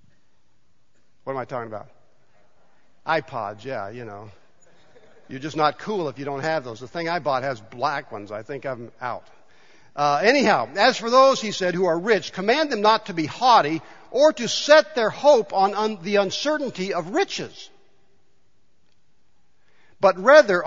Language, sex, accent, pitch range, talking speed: English, male, American, 155-235 Hz, 165 wpm